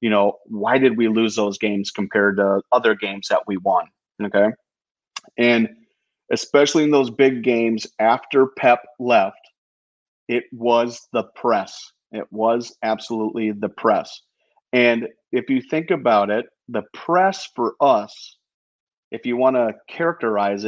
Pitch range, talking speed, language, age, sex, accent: 110-130 Hz, 140 wpm, English, 30-49, male, American